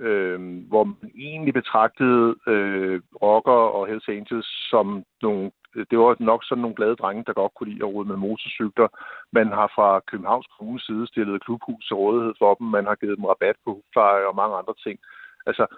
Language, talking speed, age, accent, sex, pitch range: Danish, 185 wpm, 60-79, native, male, 100-130 Hz